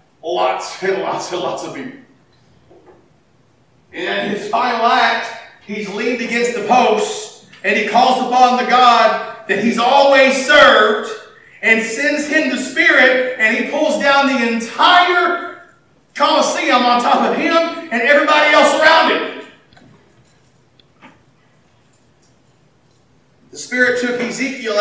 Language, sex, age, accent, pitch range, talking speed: English, male, 40-59, American, 245-315 Hz, 125 wpm